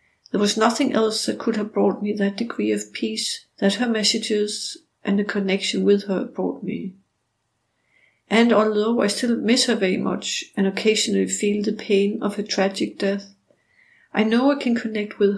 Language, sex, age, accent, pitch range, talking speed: English, female, 60-79, Danish, 195-230 Hz, 180 wpm